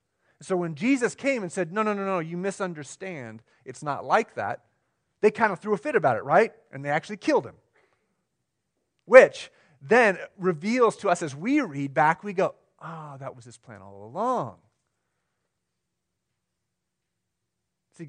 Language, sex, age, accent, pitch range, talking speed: English, male, 40-59, American, 130-190 Hz, 165 wpm